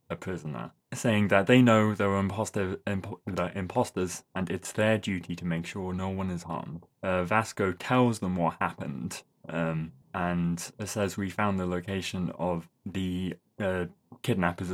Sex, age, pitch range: male, 20-39, 85-105 Hz